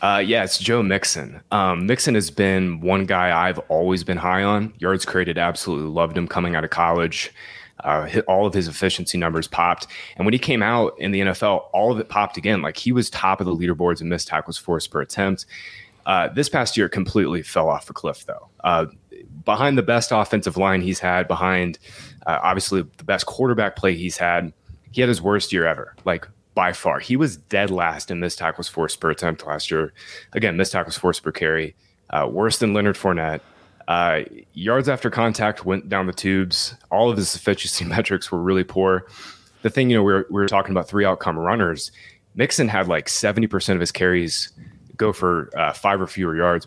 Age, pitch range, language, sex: 20-39, 85-100 Hz, English, male